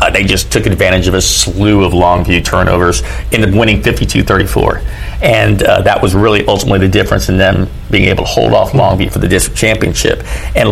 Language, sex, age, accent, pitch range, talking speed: English, male, 40-59, American, 95-115 Hz, 205 wpm